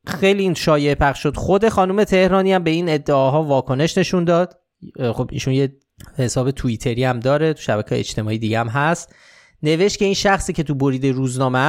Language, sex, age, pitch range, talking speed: Persian, male, 20-39, 120-165 Hz, 185 wpm